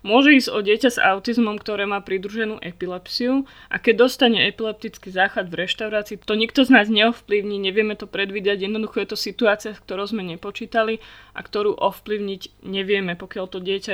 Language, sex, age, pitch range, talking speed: Slovak, female, 20-39, 195-225 Hz, 170 wpm